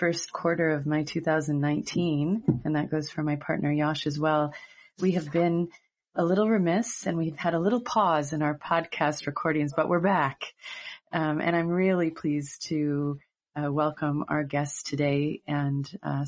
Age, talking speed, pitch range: 30-49, 170 wpm, 155-185 Hz